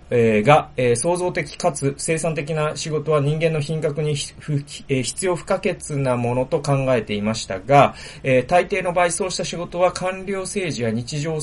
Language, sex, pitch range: Japanese, male, 120-180 Hz